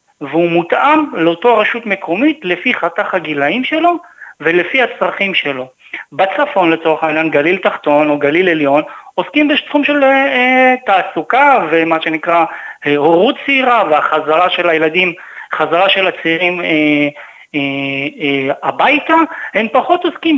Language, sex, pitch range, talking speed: Hebrew, male, 160-255 Hz, 125 wpm